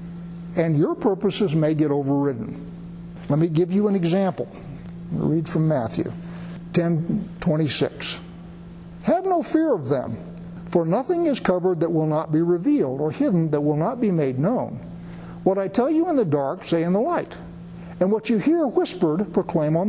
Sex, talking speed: male, 170 wpm